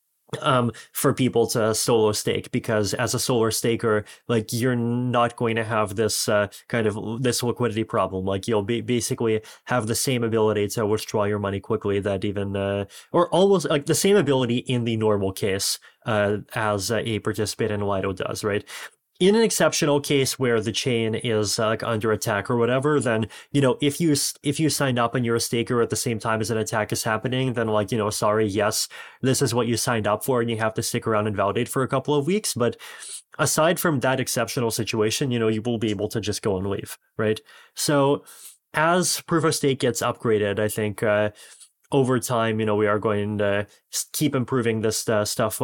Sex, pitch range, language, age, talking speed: male, 105-130 Hz, English, 20-39, 210 wpm